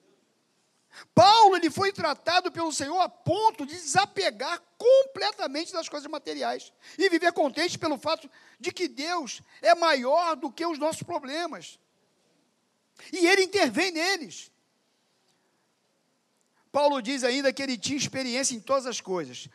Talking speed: 135 wpm